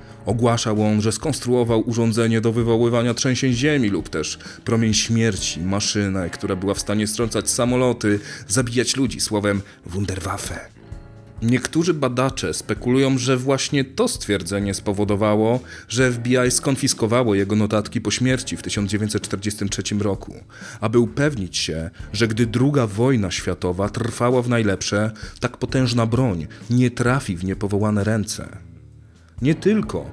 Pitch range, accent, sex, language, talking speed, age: 105-130 Hz, native, male, Polish, 125 wpm, 30-49